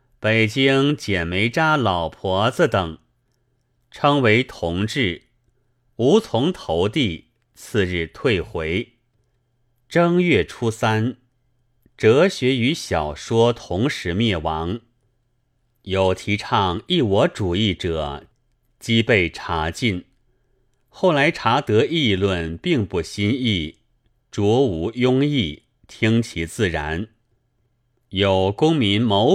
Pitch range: 100-125 Hz